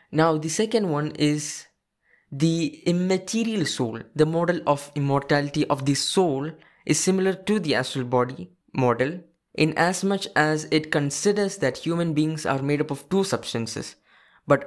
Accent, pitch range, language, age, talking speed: Indian, 140-175 Hz, English, 20-39, 155 wpm